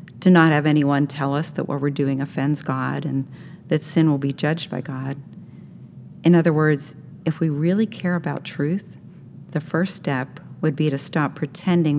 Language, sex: English, female